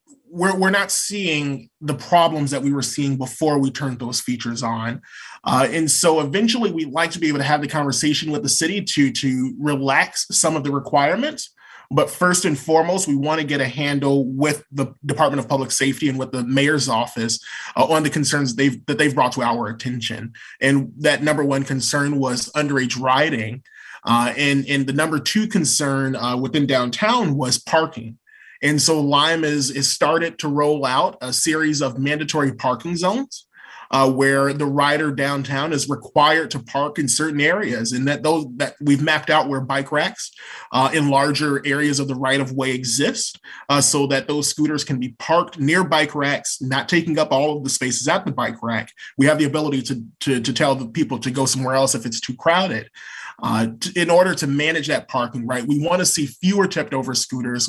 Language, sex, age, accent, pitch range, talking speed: English, male, 30-49, American, 130-155 Hz, 200 wpm